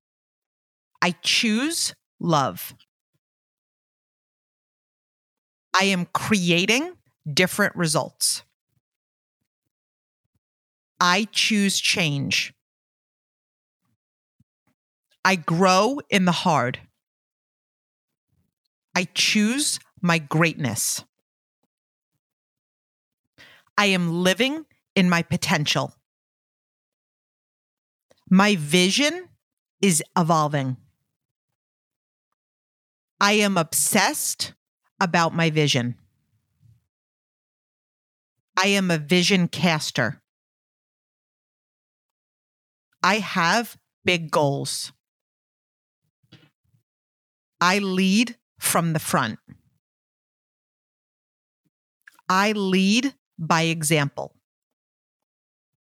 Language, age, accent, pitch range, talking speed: English, 40-59, American, 145-200 Hz, 60 wpm